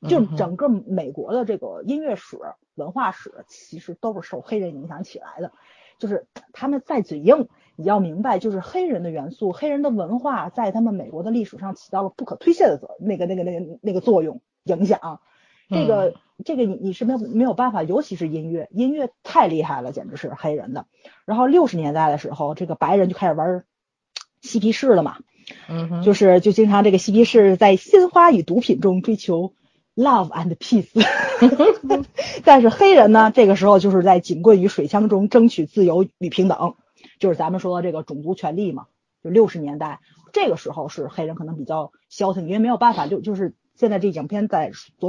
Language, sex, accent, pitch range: Chinese, female, native, 175-230 Hz